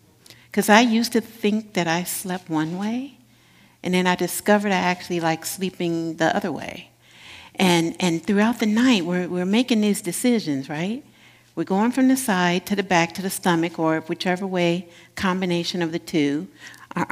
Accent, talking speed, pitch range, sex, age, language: American, 180 wpm, 165-215 Hz, female, 60-79, English